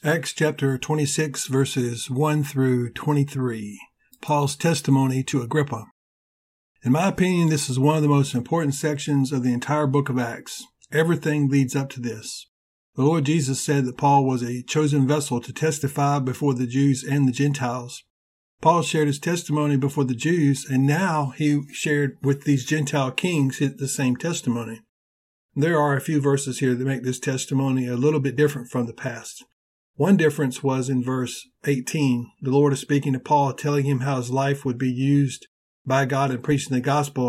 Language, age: English, 50-69